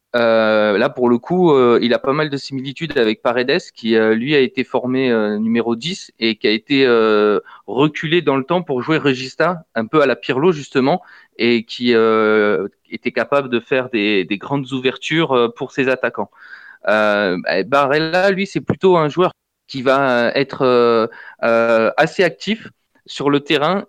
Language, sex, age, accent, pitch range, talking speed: French, male, 30-49, French, 115-150 Hz, 185 wpm